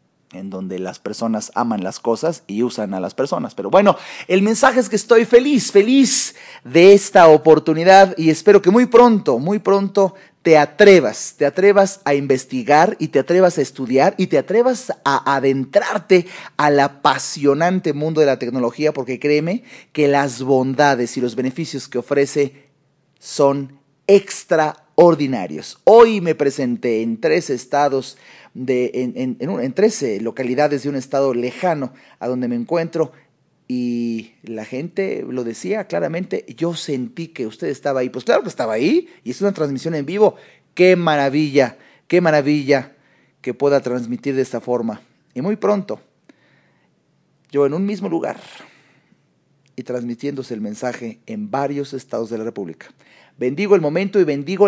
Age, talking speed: 40-59, 155 wpm